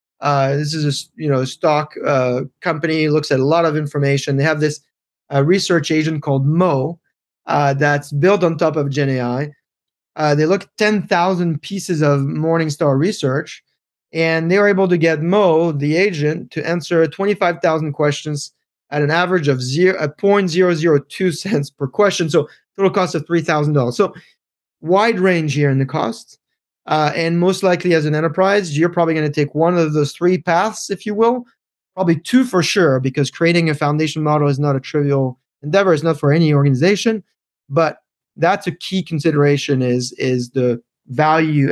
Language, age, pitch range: English, 30-49, 140-175 Hz